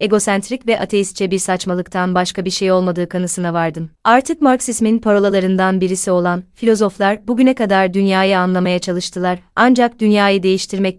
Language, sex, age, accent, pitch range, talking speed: Turkish, female, 30-49, native, 185-215 Hz, 135 wpm